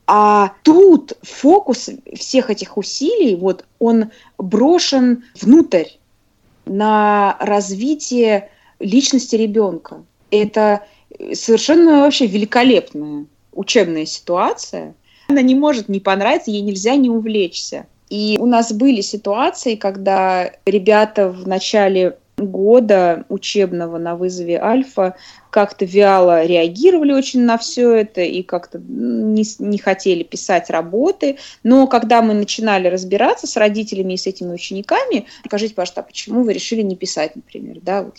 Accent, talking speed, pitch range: native, 125 wpm, 195-260 Hz